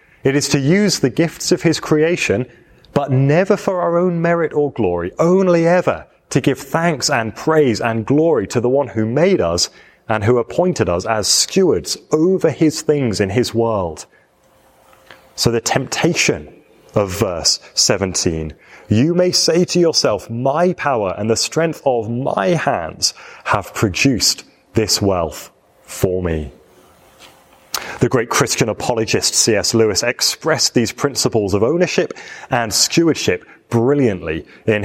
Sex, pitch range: male, 110-170 Hz